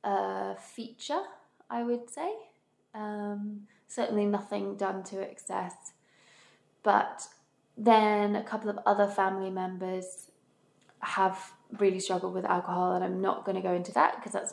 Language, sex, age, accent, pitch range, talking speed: English, female, 20-39, British, 180-210 Hz, 140 wpm